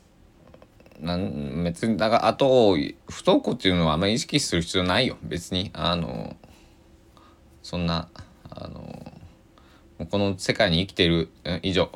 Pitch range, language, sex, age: 80-110 Hz, Japanese, male, 20-39